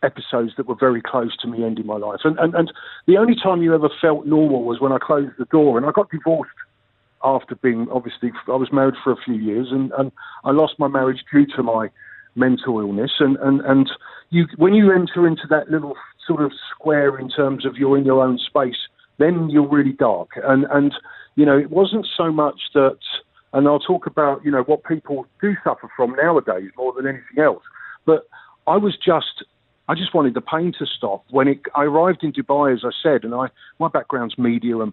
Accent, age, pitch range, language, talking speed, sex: British, 50-69, 130-160 Hz, English, 215 wpm, male